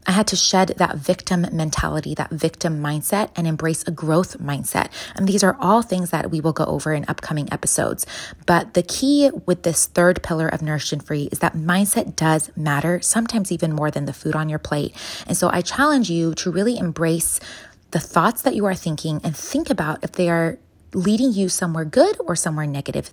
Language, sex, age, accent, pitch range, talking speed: English, female, 20-39, American, 155-185 Hz, 210 wpm